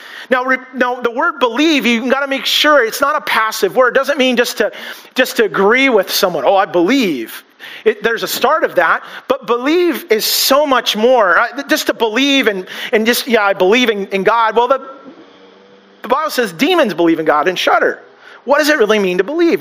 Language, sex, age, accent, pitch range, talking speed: English, male, 40-59, American, 210-275 Hz, 215 wpm